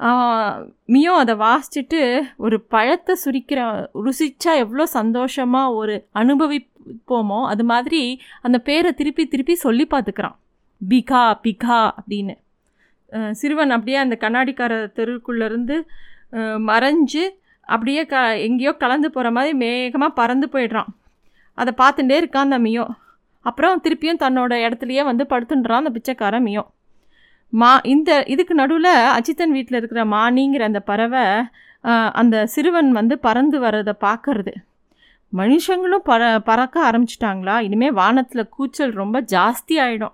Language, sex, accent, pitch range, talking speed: Tamil, female, native, 225-285 Hz, 110 wpm